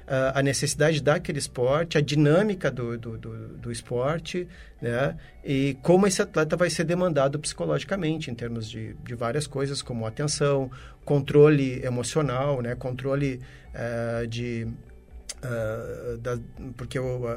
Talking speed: 110 wpm